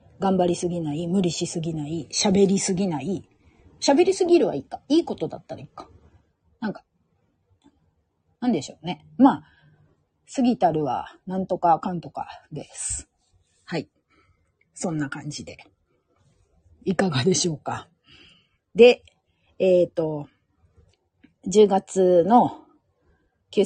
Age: 40-59